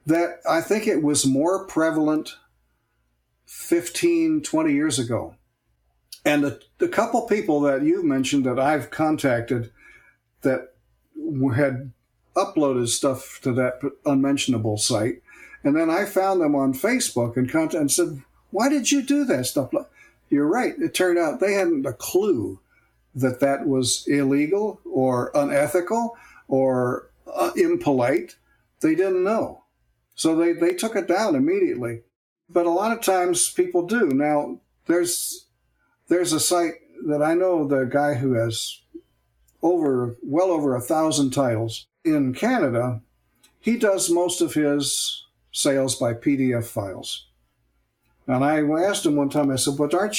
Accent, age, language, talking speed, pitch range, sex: American, 60-79, English, 140 wpm, 130-220 Hz, male